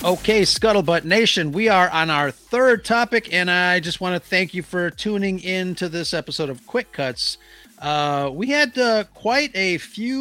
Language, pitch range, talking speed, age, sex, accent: English, 140-190 Hz, 190 wpm, 40-59, male, American